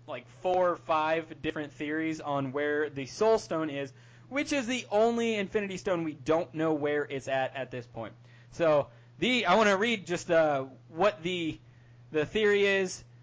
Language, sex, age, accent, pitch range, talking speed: English, male, 20-39, American, 135-180 Hz, 180 wpm